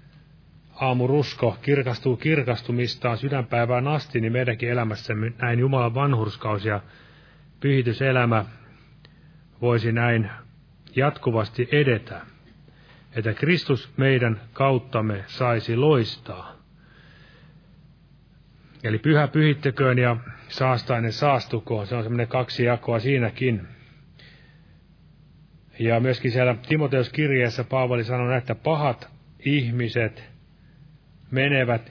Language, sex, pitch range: Finnish, male, 115-145 Hz